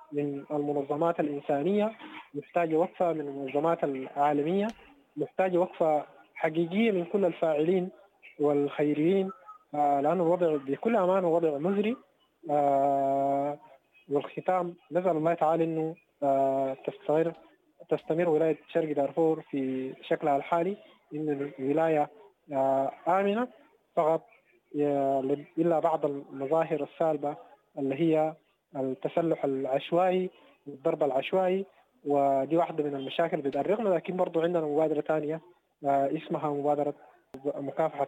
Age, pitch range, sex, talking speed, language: 20-39, 145-175 Hz, male, 95 wpm, English